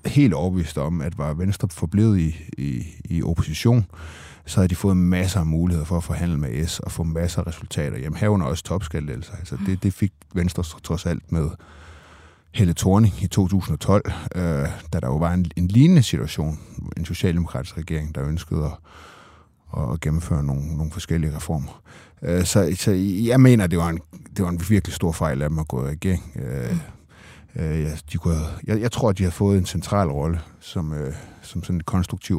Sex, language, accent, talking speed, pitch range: male, Danish, native, 190 wpm, 80-100 Hz